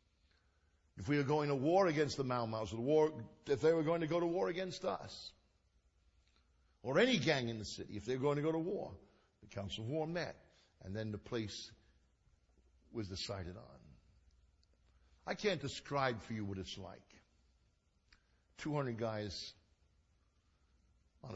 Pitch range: 75-115 Hz